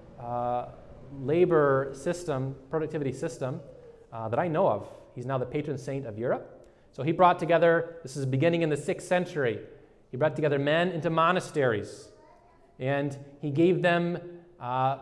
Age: 30-49